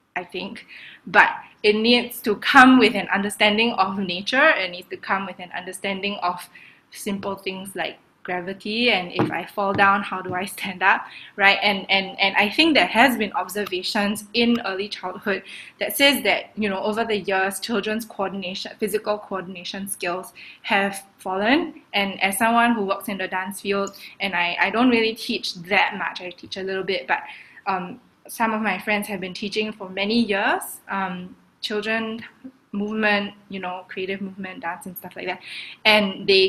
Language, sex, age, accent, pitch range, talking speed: English, female, 20-39, Malaysian, 185-215 Hz, 180 wpm